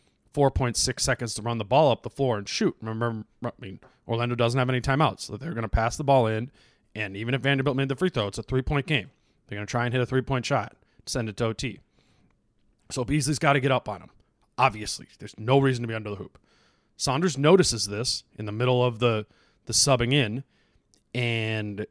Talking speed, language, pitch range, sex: 220 wpm, English, 110-135 Hz, male